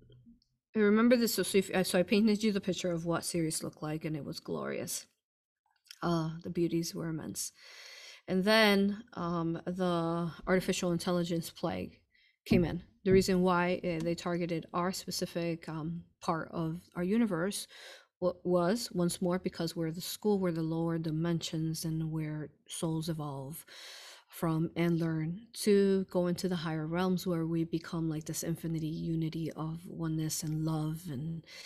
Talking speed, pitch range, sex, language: 155 wpm, 165-195 Hz, female, English